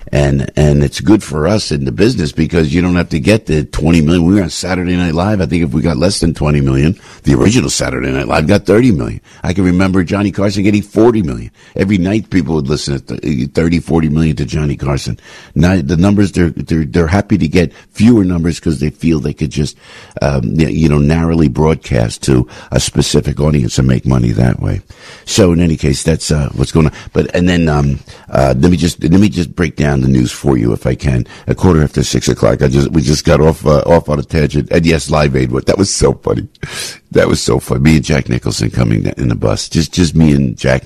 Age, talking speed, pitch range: 60-79, 240 wpm, 70-90 Hz